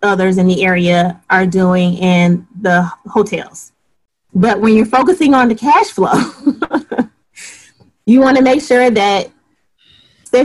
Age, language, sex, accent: 30-49, English, female, American